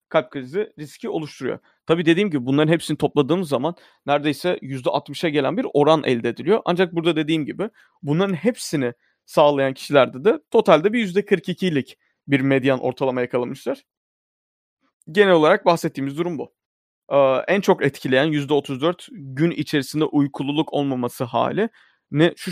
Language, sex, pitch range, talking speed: Turkish, male, 135-170 Hz, 135 wpm